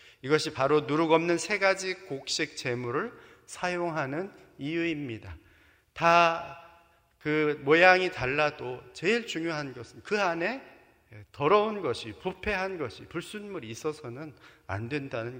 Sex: male